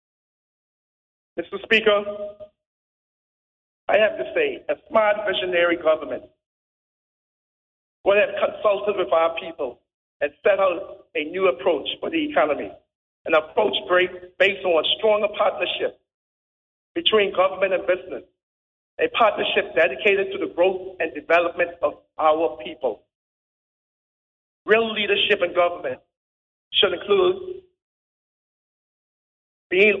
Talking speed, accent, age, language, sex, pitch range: 110 wpm, American, 50-69, English, male, 170-230 Hz